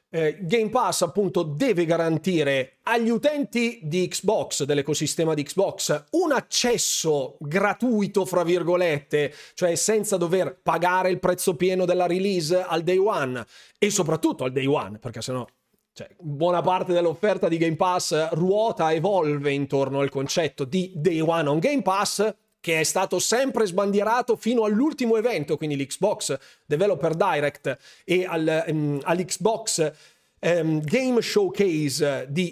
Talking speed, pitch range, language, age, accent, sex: 135 wpm, 155-220 Hz, Italian, 30-49, native, male